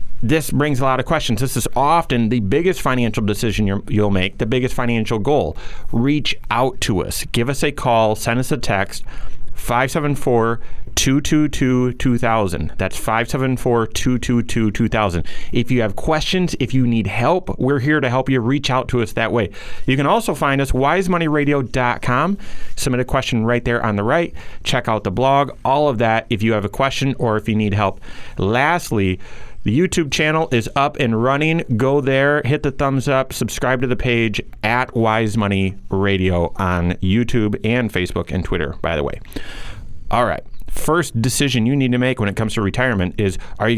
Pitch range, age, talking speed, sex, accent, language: 110-140 Hz, 30-49, 180 wpm, male, American, English